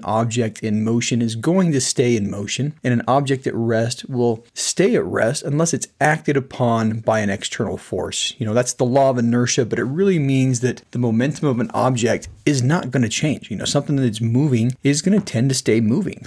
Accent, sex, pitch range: American, male, 115-135 Hz